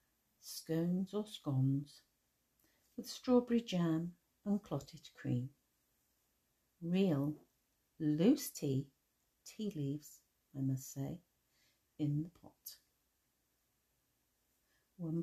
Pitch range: 145-205 Hz